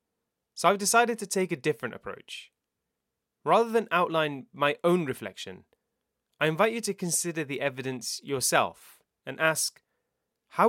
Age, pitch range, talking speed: 30-49, 135-185 Hz, 140 wpm